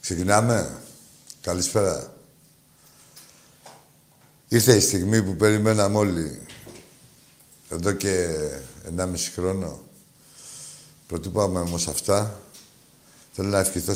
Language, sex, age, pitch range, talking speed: Greek, male, 60-79, 90-130 Hz, 75 wpm